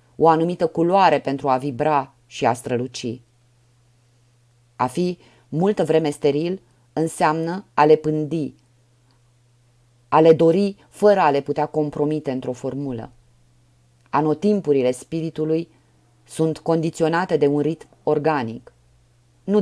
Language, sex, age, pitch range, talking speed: Romanian, female, 30-49, 120-160 Hz, 115 wpm